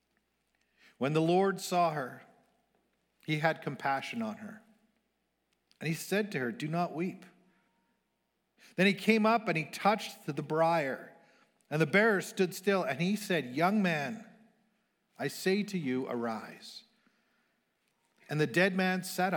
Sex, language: male, English